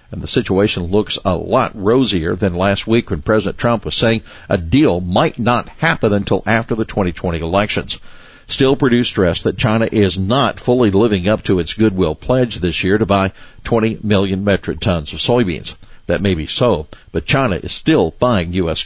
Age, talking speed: 60-79, 190 wpm